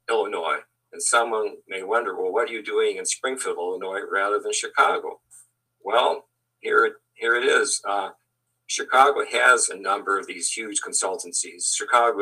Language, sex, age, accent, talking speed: English, male, 50-69, American, 155 wpm